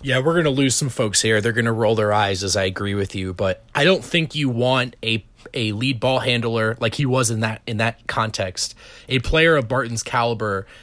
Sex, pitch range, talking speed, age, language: male, 110-150 Hz, 240 wpm, 30-49, English